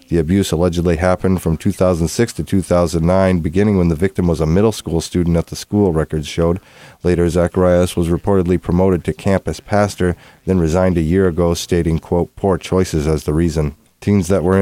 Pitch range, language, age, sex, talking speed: 85-95 Hz, English, 30-49, male, 185 wpm